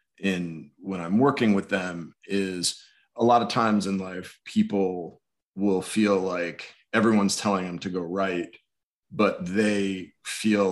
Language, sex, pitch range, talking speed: English, male, 90-105 Hz, 145 wpm